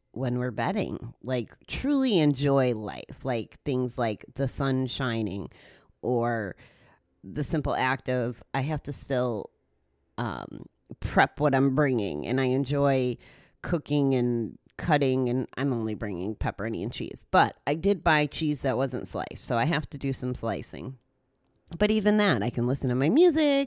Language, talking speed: English, 160 wpm